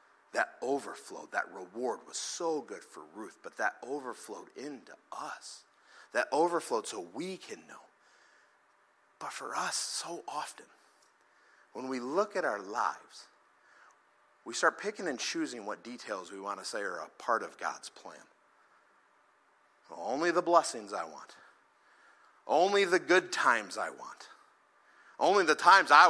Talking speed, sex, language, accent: 145 wpm, male, English, American